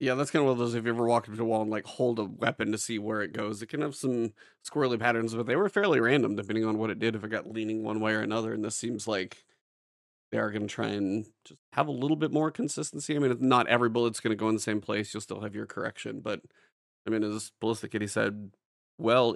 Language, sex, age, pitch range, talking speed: English, male, 30-49, 110-120 Hz, 280 wpm